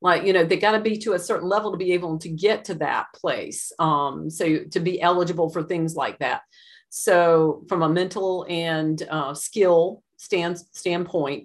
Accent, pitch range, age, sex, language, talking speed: American, 150-175 Hz, 40-59, female, English, 190 wpm